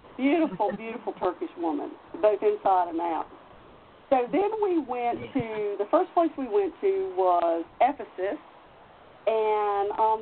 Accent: American